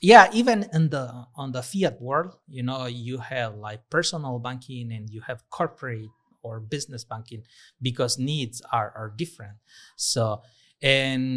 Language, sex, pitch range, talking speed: English, male, 115-140 Hz, 155 wpm